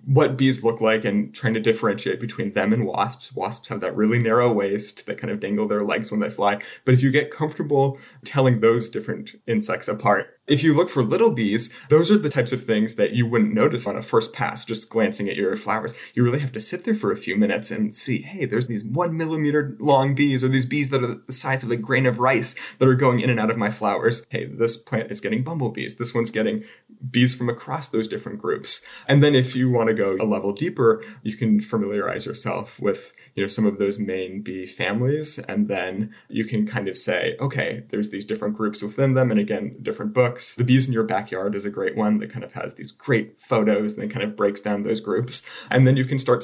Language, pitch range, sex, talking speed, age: English, 105-130 Hz, male, 240 wpm, 30-49